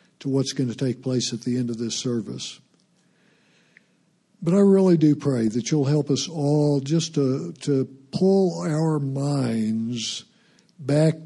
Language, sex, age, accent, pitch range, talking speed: English, male, 60-79, American, 130-170 Hz, 155 wpm